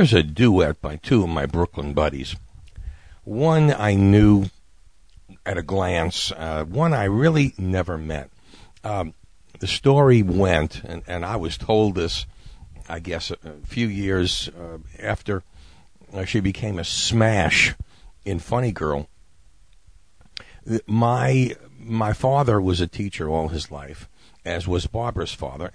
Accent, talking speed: American, 135 wpm